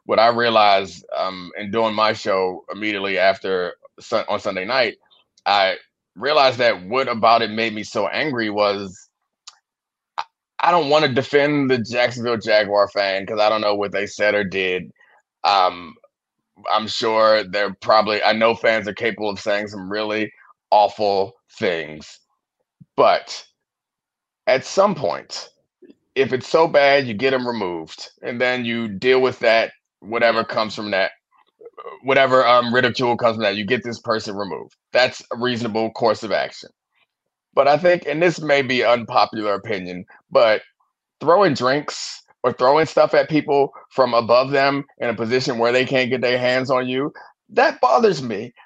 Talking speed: 165 wpm